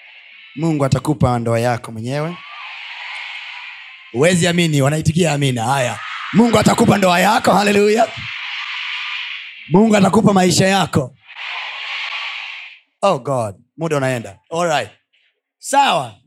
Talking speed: 90 wpm